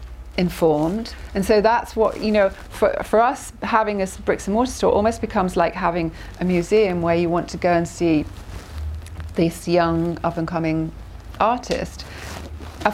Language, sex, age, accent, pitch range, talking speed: English, female, 40-59, British, 170-200 Hz, 165 wpm